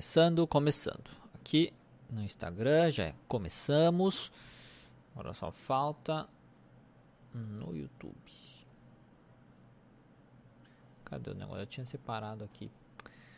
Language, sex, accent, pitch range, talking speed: Portuguese, male, Brazilian, 120-160 Hz, 90 wpm